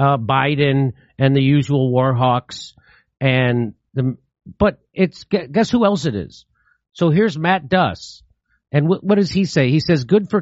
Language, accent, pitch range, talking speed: English, American, 125-180 Hz, 175 wpm